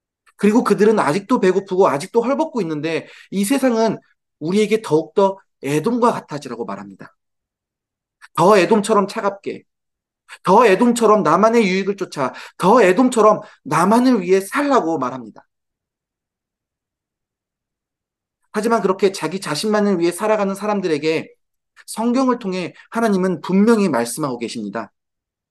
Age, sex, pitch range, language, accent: 30-49, male, 155-215 Hz, Korean, native